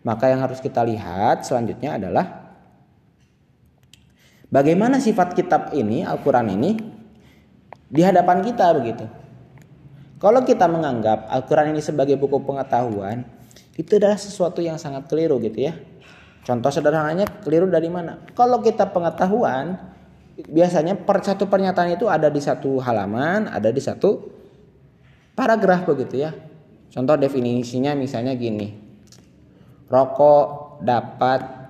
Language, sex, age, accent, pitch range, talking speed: Indonesian, male, 20-39, native, 120-165 Hz, 115 wpm